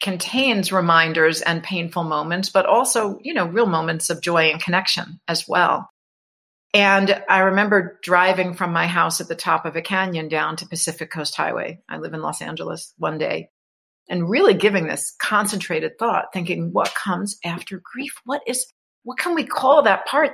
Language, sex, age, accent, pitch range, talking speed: English, female, 50-69, American, 175-220 Hz, 180 wpm